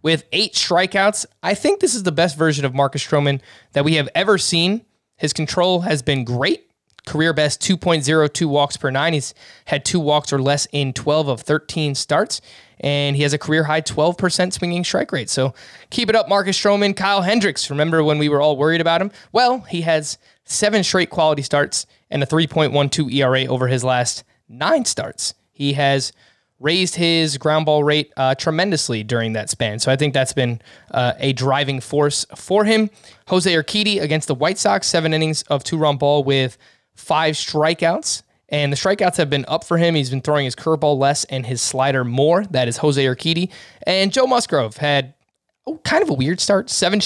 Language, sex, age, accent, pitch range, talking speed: English, male, 20-39, American, 140-175 Hz, 195 wpm